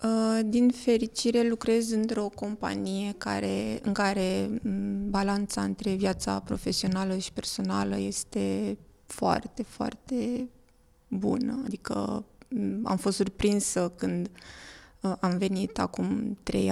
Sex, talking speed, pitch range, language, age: female, 95 wpm, 185-225 Hz, Romanian, 20-39